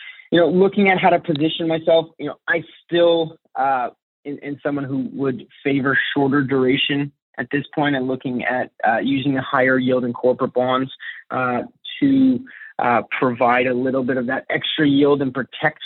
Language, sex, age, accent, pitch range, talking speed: English, male, 30-49, American, 125-155 Hz, 180 wpm